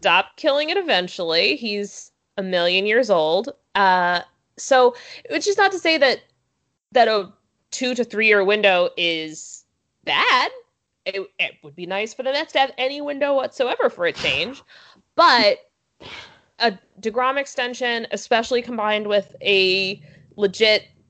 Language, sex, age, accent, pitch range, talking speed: English, female, 20-39, American, 185-255 Hz, 145 wpm